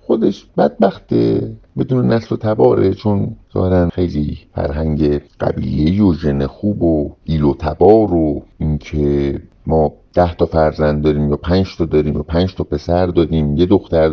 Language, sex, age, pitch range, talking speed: Persian, male, 50-69, 80-100 Hz, 150 wpm